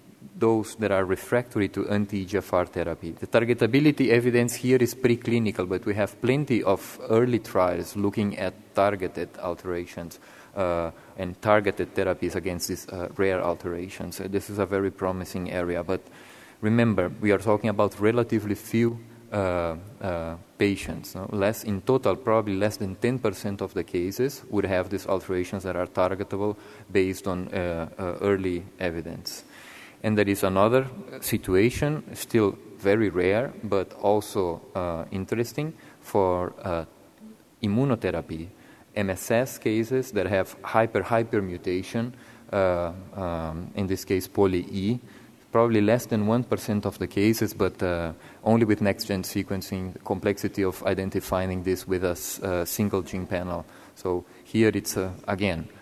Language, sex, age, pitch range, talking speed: English, male, 20-39, 90-110 Hz, 140 wpm